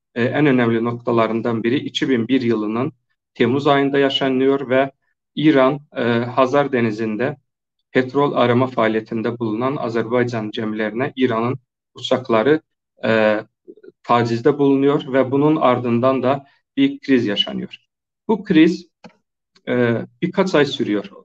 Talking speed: 110 wpm